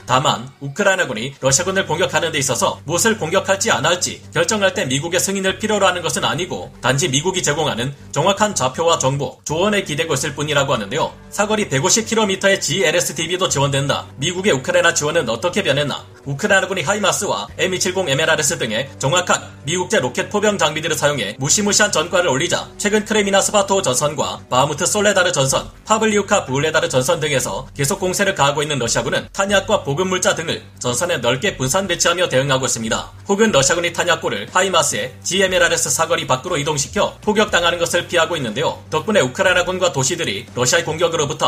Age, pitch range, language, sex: 30-49, 135-190 Hz, Korean, male